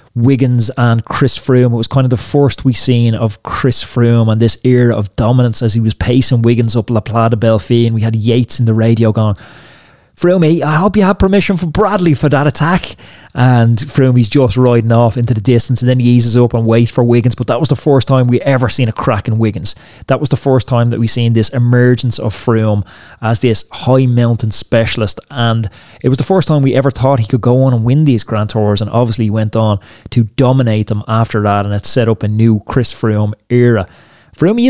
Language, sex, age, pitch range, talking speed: English, male, 20-39, 110-135 Hz, 230 wpm